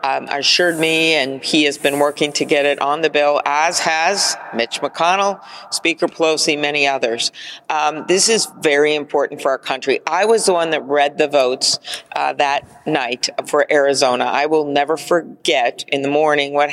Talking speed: 185 wpm